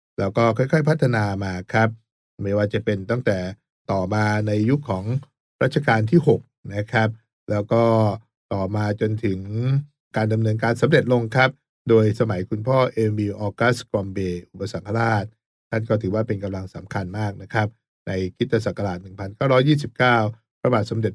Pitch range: 100-120 Hz